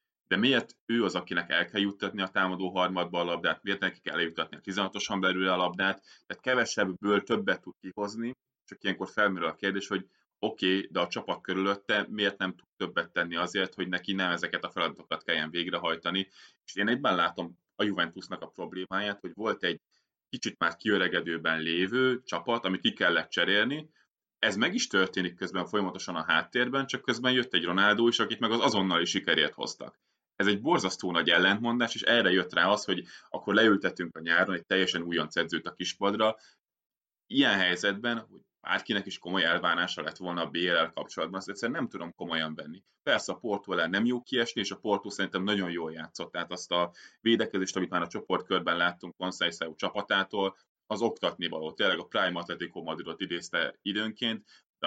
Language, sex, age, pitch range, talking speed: Hungarian, male, 30-49, 90-100 Hz, 185 wpm